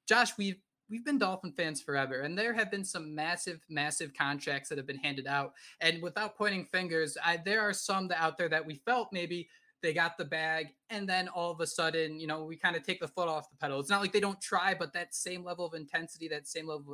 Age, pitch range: 20-39, 170-215 Hz